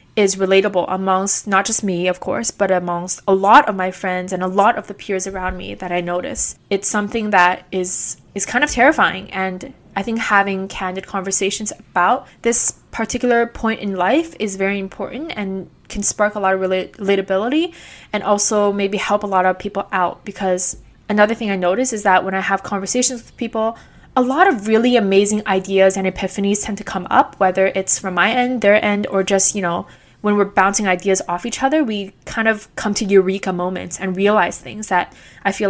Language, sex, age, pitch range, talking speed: English, female, 20-39, 190-215 Hz, 205 wpm